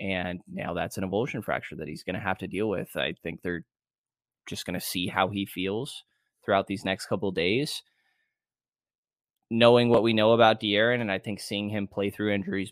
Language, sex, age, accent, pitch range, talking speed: English, male, 20-39, American, 95-115 Hz, 210 wpm